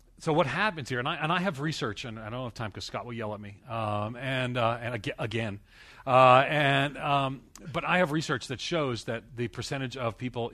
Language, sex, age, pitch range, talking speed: English, male, 40-59, 110-135 Hz, 235 wpm